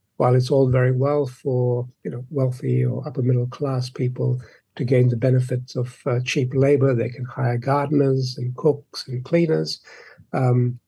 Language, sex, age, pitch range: English, male, 60-79, 125-160 Hz